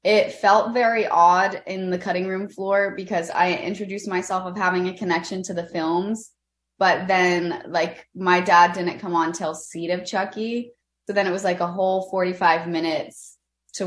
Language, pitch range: English, 170-205 Hz